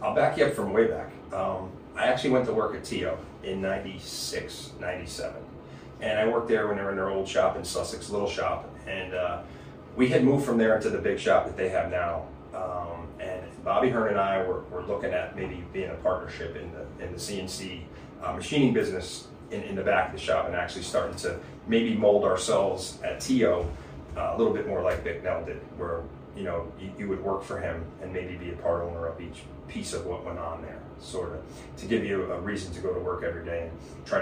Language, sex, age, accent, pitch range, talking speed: English, male, 30-49, American, 75-100 Hz, 230 wpm